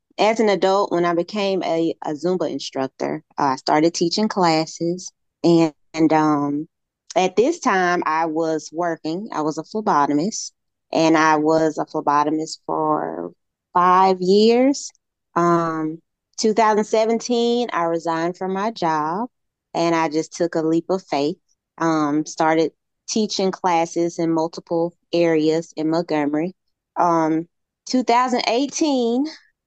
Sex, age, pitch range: female, 20-39, 160-200 Hz